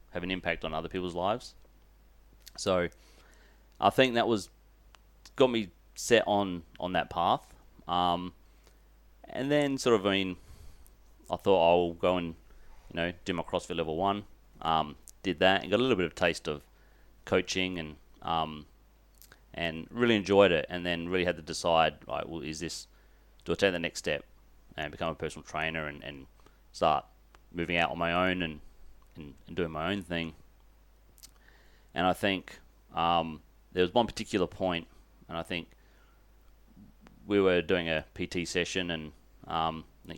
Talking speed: 165 wpm